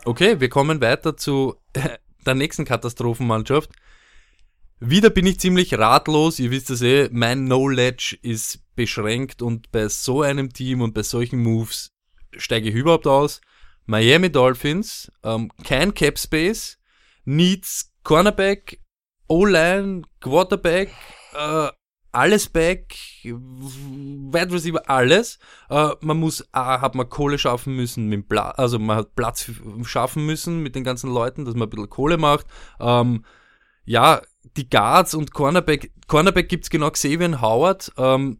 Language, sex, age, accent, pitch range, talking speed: German, male, 20-39, German, 120-155 Hz, 140 wpm